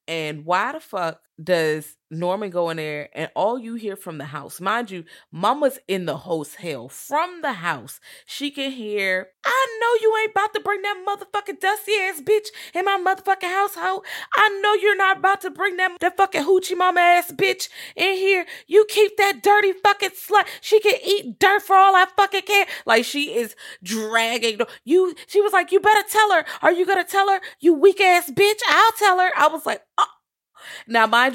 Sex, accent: female, American